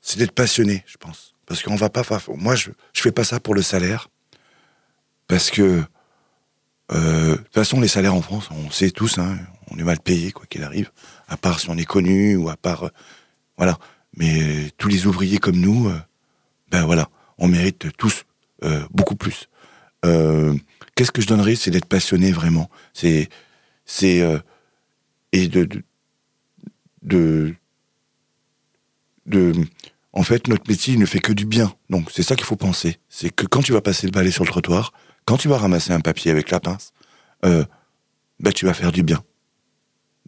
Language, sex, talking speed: French, male, 185 wpm